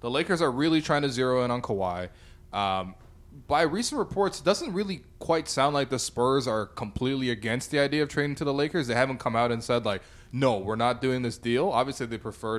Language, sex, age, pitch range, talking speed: English, male, 20-39, 110-140 Hz, 230 wpm